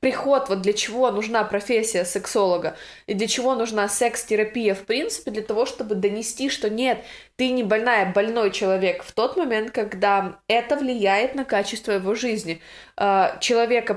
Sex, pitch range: female, 195-235 Hz